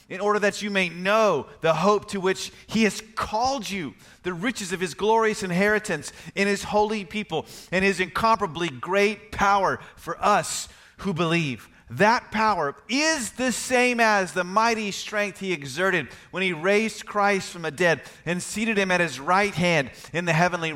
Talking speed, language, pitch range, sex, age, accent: 175 wpm, English, 150-205 Hz, male, 30-49, American